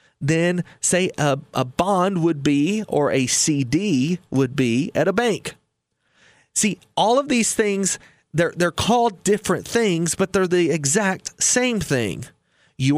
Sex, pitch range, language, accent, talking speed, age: male, 145-205 Hz, English, American, 140 wpm, 30-49